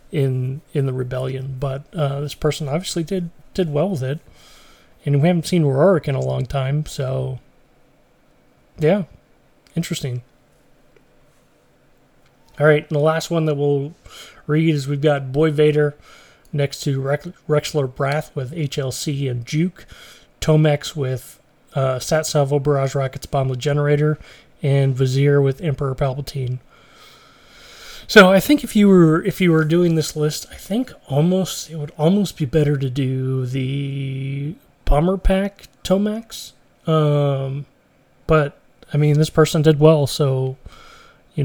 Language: English